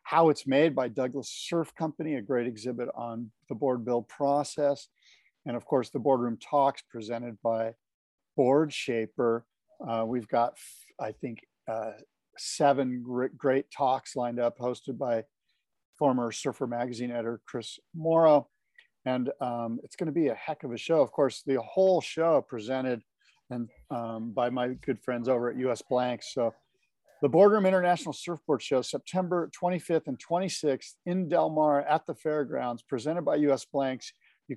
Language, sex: English, male